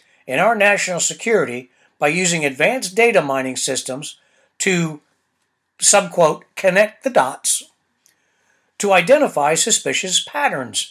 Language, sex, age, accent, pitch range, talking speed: English, male, 60-79, American, 155-210 Hz, 105 wpm